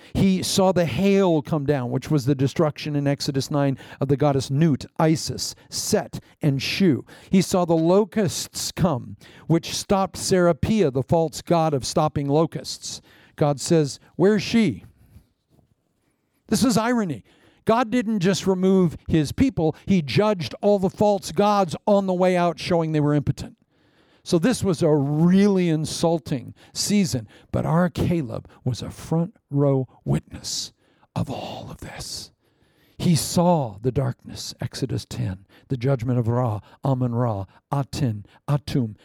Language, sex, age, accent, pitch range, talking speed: English, male, 50-69, American, 130-175 Hz, 145 wpm